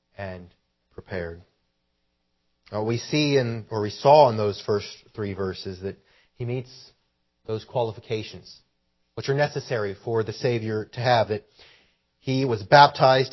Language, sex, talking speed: English, male, 130 wpm